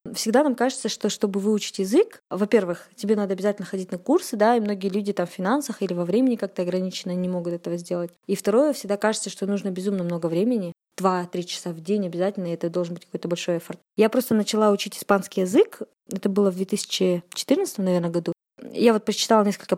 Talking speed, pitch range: 205 wpm, 185-220 Hz